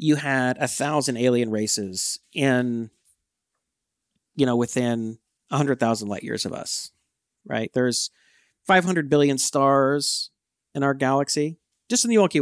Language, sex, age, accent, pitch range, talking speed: English, male, 40-59, American, 120-150 Hz, 145 wpm